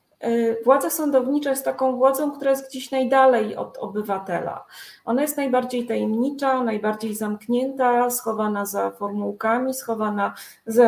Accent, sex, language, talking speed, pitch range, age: native, female, Polish, 120 wpm, 230-260 Hz, 30-49